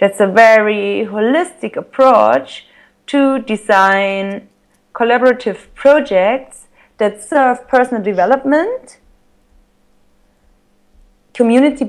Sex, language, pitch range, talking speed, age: female, English, 205-270 Hz, 70 wpm, 30-49